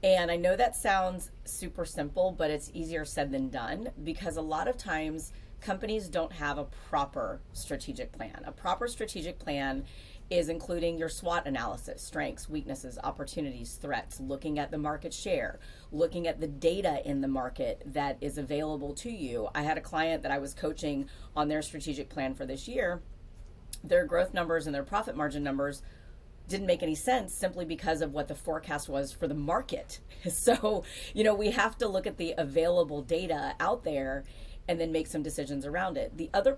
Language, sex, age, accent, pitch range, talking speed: English, female, 30-49, American, 145-185 Hz, 185 wpm